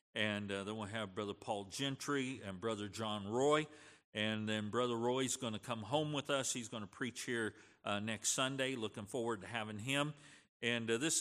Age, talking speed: 50-69, 205 wpm